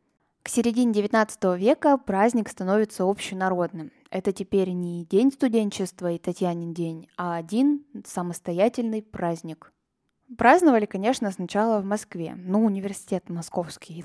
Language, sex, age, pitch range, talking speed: Russian, female, 10-29, 180-225 Hz, 115 wpm